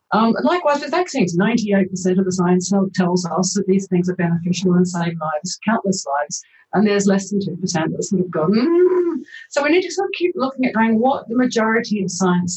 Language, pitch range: English, 175-220 Hz